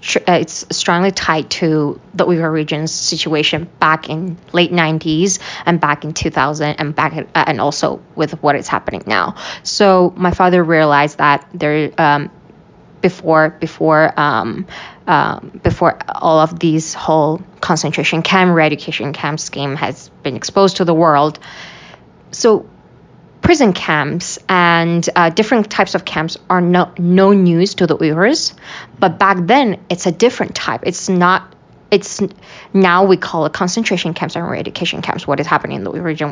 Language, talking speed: English, 155 wpm